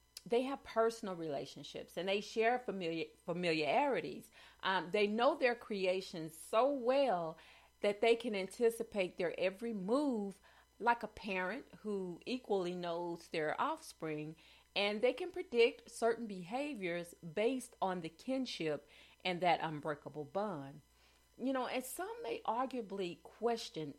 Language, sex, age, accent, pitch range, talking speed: English, female, 40-59, American, 165-230 Hz, 130 wpm